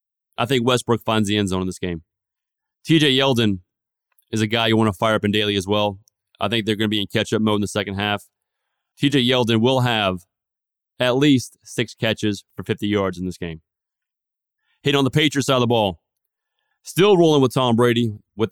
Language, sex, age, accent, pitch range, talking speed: English, male, 30-49, American, 105-130 Hz, 210 wpm